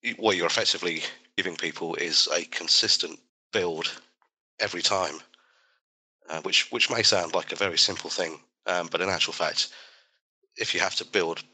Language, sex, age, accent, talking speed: English, male, 30-49, British, 160 wpm